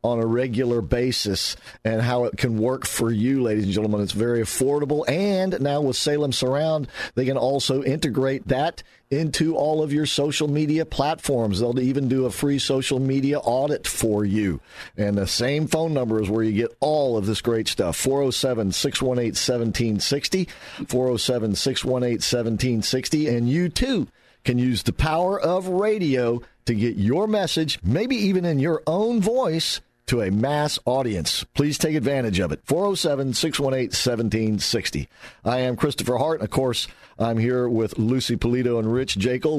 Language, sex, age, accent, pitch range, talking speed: English, male, 50-69, American, 110-140 Hz, 155 wpm